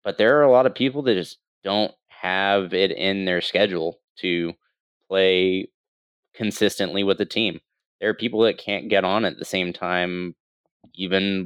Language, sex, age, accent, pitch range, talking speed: English, male, 20-39, American, 95-115 Hz, 175 wpm